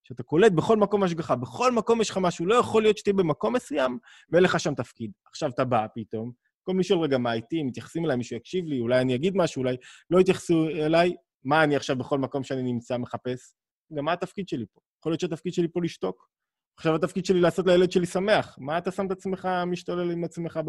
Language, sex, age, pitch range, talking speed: Hebrew, male, 20-39, 130-190 Hz, 210 wpm